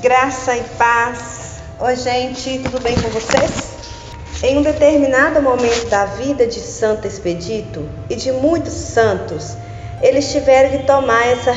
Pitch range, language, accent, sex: 240-310 Hz, Portuguese, Brazilian, female